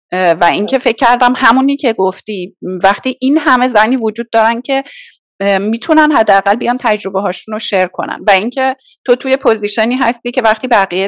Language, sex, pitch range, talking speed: Persian, female, 200-265 Hz, 160 wpm